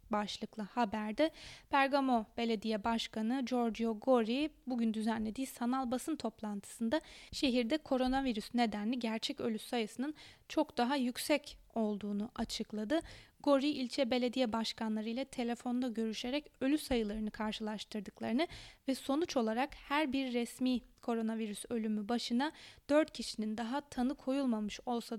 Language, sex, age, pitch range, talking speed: Turkish, female, 20-39, 225-270 Hz, 110 wpm